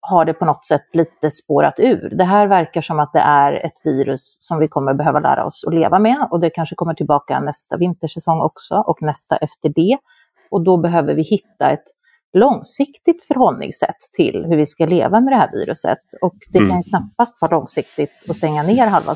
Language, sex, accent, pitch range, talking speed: Swedish, female, native, 155-215 Hz, 205 wpm